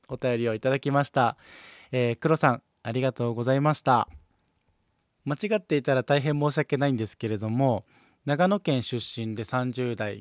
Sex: male